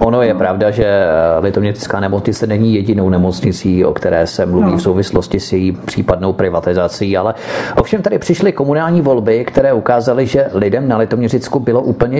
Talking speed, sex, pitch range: 160 wpm, male, 105-150 Hz